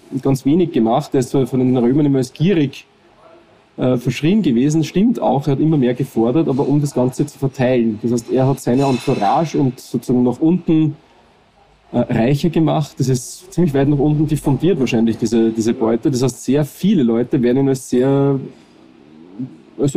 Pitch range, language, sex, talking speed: 120-145 Hz, German, male, 175 wpm